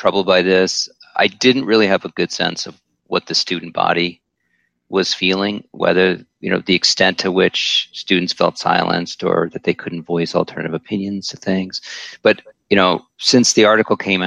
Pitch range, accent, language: 85-95 Hz, American, English